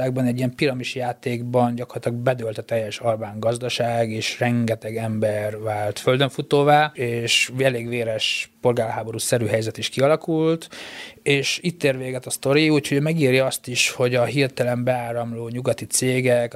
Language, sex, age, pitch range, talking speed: Hungarian, male, 20-39, 115-130 Hz, 140 wpm